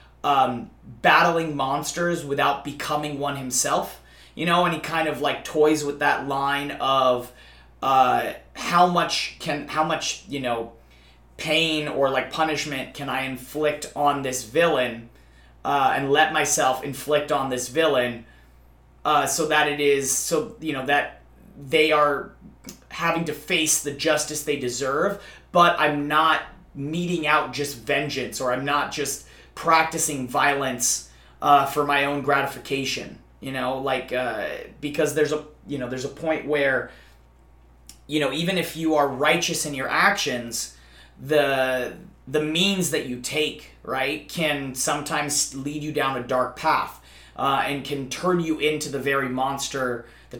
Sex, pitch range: male, 125-155 Hz